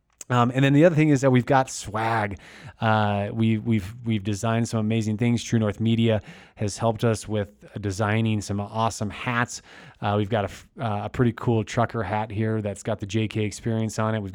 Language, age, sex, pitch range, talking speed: English, 20-39, male, 105-115 Hz, 205 wpm